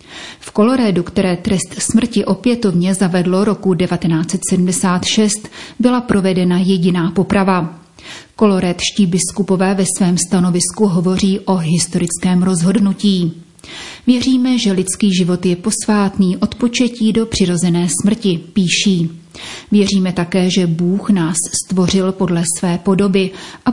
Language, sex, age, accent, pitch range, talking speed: Czech, female, 30-49, native, 180-210 Hz, 110 wpm